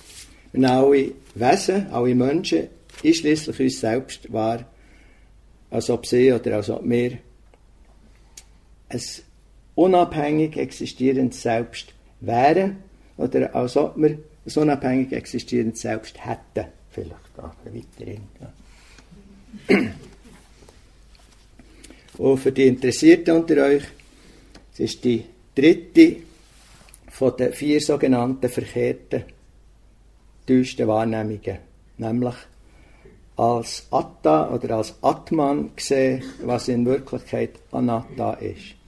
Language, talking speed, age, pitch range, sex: English, 95 wpm, 60-79, 110-150 Hz, male